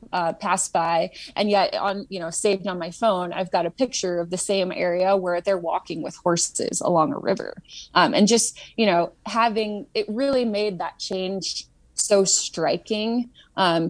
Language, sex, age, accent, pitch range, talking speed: English, female, 20-39, American, 175-220 Hz, 180 wpm